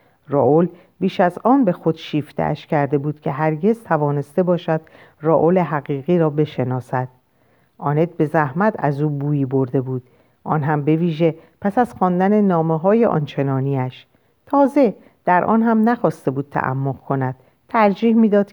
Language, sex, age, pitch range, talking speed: Persian, female, 50-69, 140-185 Hz, 145 wpm